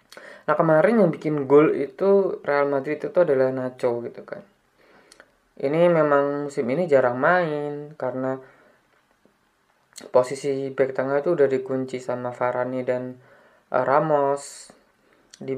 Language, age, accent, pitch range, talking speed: Indonesian, 20-39, native, 130-140 Hz, 125 wpm